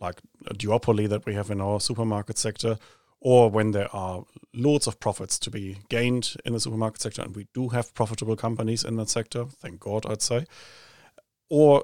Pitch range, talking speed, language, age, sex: 100-115 Hz, 195 wpm, English, 40-59, male